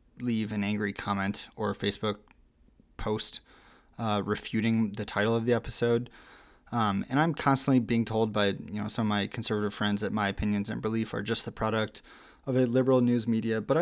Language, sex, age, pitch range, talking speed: English, male, 20-39, 105-130 Hz, 190 wpm